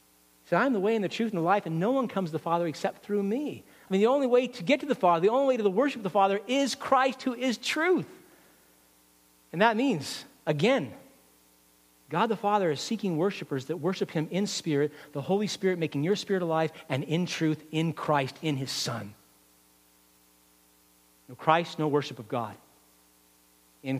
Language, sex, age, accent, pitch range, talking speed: English, male, 50-69, American, 130-210 Hz, 200 wpm